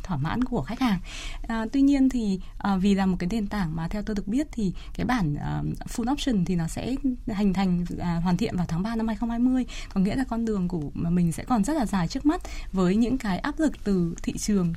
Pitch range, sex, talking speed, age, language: 185-250 Hz, female, 250 wpm, 20-39, Vietnamese